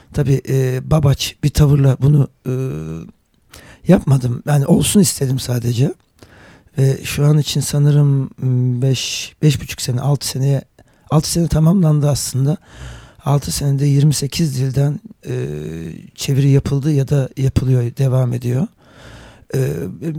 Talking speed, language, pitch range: 120 wpm, Turkish, 125-150 Hz